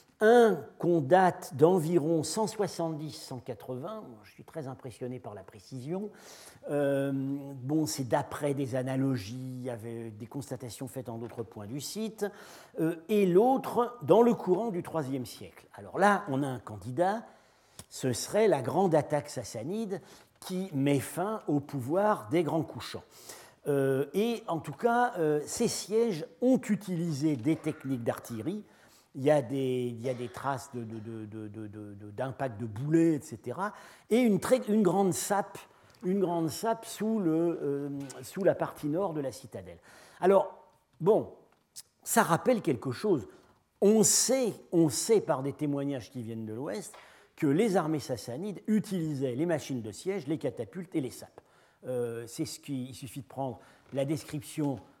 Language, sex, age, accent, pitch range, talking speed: French, male, 50-69, French, 130-190 Hz, 165 wpm